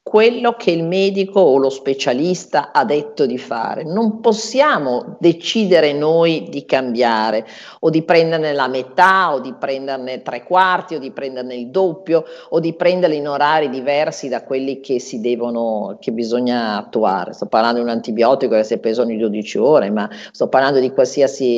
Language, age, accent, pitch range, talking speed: Italian, 50-69, native, 125-190 Hz, 175 wpm